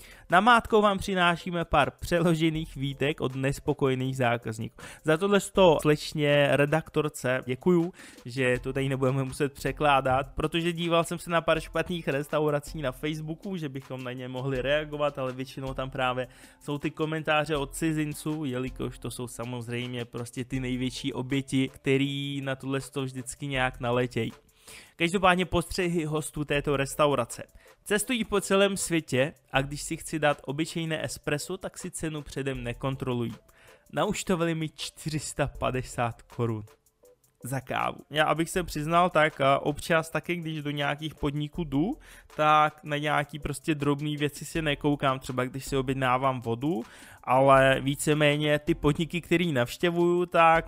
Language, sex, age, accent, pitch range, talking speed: Czech, male, 20-39, native, 130-155 Hz, 145 wpm